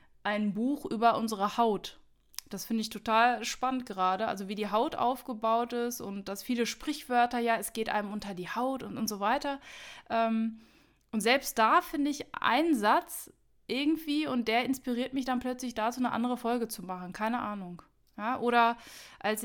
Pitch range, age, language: 210-255 Hz, 20-39, German